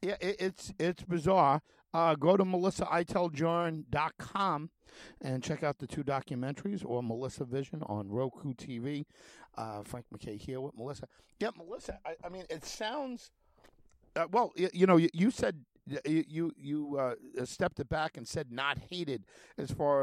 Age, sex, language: 50-69, male, English